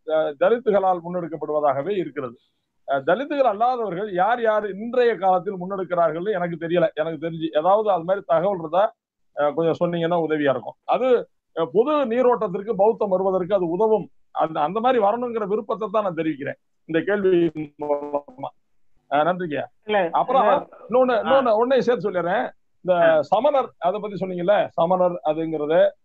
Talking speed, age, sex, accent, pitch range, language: 110 wpm, 50-69, male, native, 165-220 Hz, Tamil